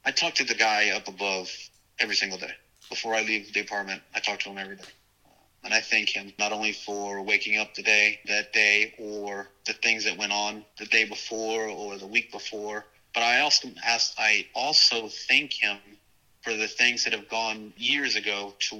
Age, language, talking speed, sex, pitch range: 30-49, English, 200 wpm, male, 100-125 Hz